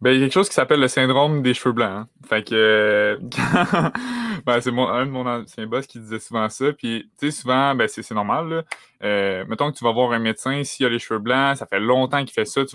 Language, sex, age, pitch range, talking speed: French, male, 20-39, 105-125 Hz, 270 wpm